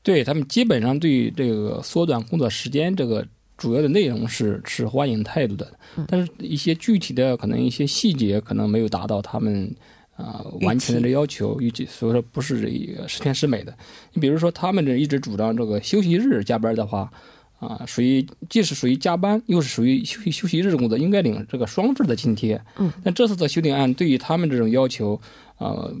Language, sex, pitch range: Korean, male, 115-165 Hz